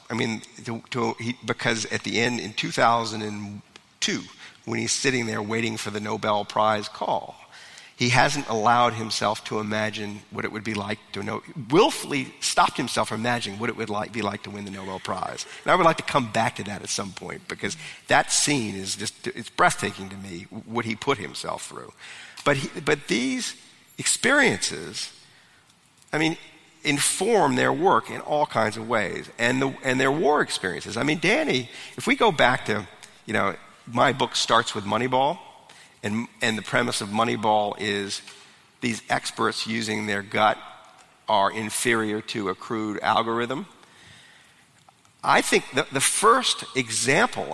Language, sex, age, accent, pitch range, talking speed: English, male, 50-69, American, 105-125 Hz, 170 wpm